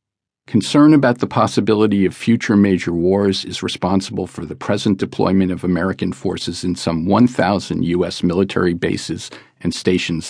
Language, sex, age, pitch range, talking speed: English, male, 50-69, 90-105 Hz, 145 wpm